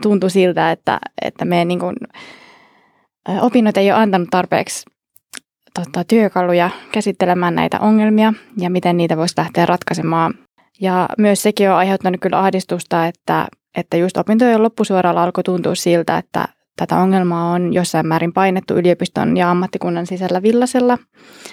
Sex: female